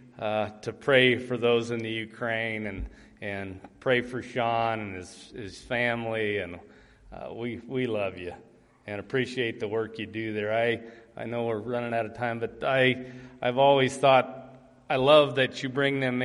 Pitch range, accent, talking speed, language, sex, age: 115-135 Hz, American, 180 wpm, English, male, 40-59